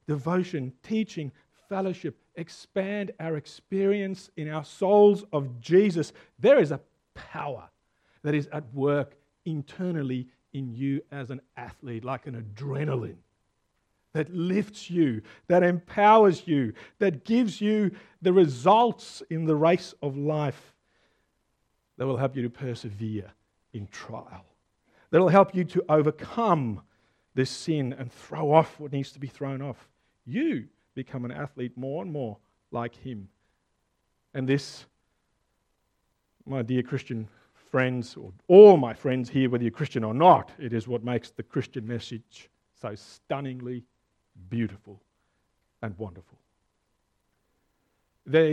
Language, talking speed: English, 130 wpm